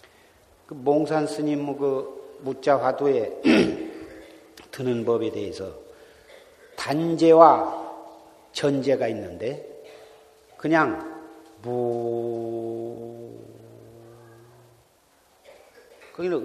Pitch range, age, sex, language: 115-160 Hz, 40-59, male, Korean